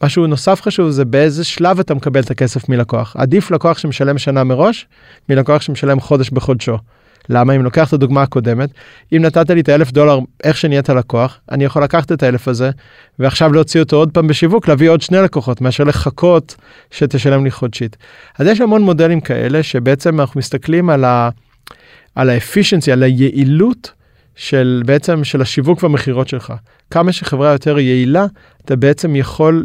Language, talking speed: Hebrew, 170 wpm